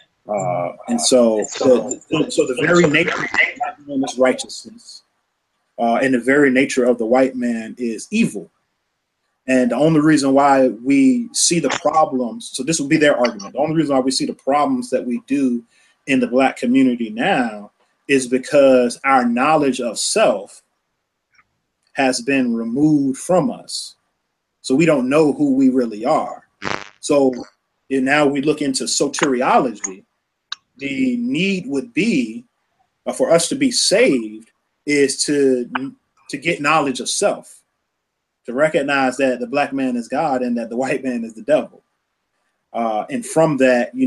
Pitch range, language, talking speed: 120-185 Hz, English, 165 wpm